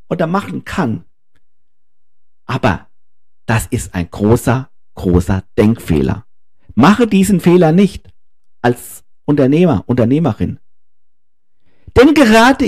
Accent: German